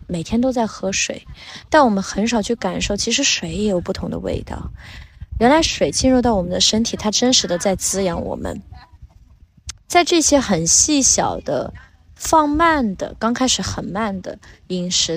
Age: 20-39